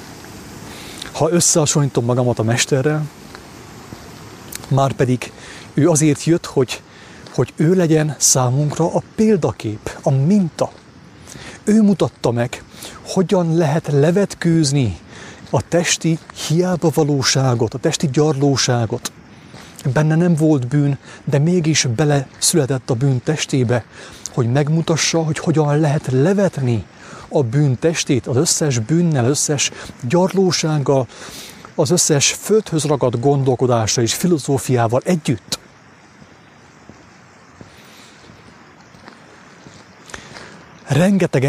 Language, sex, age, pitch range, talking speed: English, male, 30-49, 130-165 Hz, 95 wpm